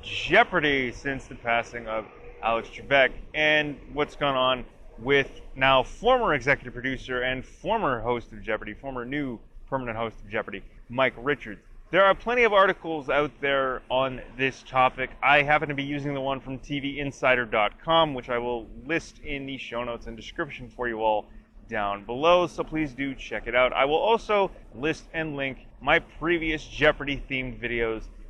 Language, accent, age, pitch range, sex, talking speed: English, American, 30-49, 120-175 Hz, male, 170 wpm